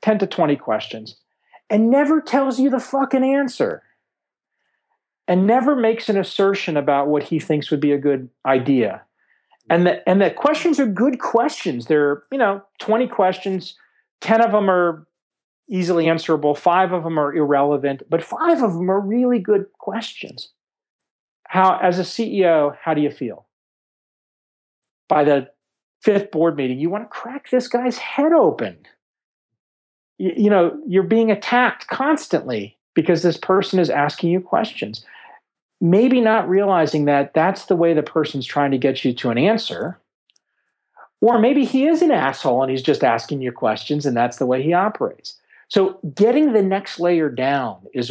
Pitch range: 145-225 Hz